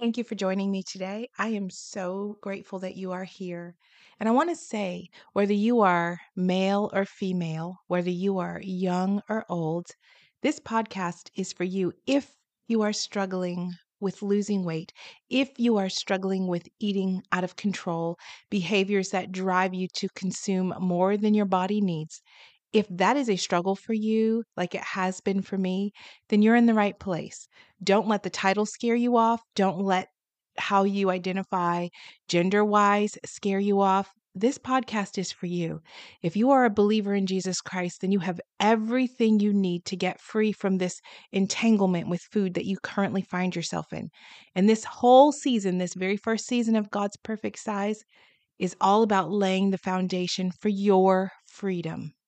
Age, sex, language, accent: 30-49, female, English, American